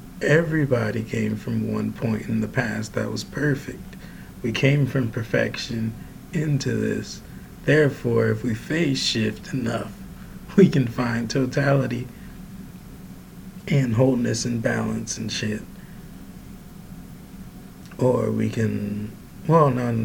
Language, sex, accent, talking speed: English, male, American, 115 wpm